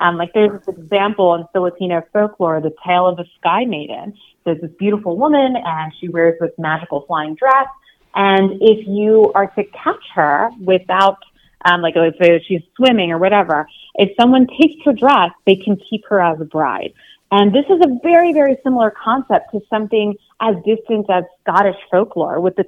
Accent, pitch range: American, 175-225 Hz